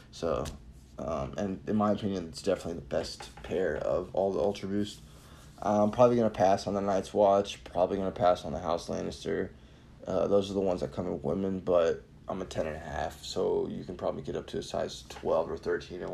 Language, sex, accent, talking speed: English, male, American, 220 wpm